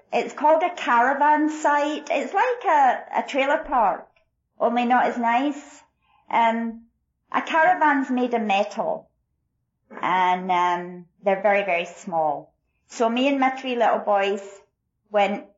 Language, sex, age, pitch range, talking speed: English, female, 40-59, 200-290 Hz, 140 wpm